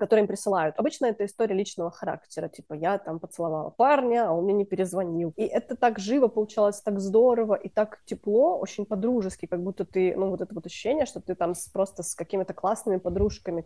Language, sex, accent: Russian, female, native